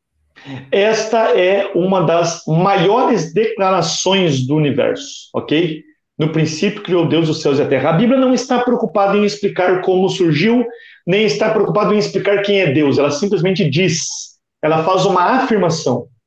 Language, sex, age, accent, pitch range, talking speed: Portuguese, male, 50-69, Brazilian, 160-220 Hz, 155 wpm